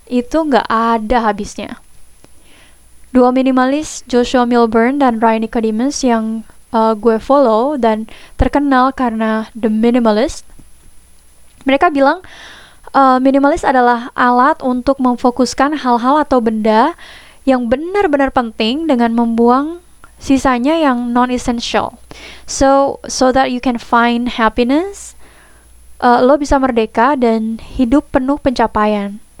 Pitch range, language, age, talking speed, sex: 230-275 Hz, Indonesian, 20-39, 110 wpm, female